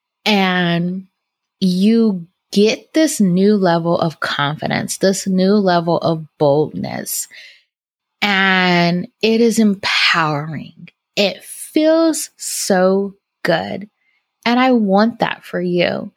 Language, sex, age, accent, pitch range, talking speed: English, female, 20-39, American, 175-225 Hz, 100 wpm